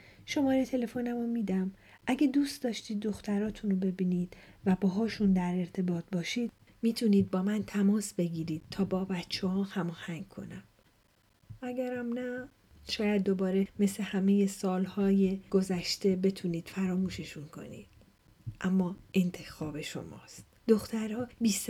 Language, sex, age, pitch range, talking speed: Persian, female, 40-59, 185-245 Hz, 115 wpm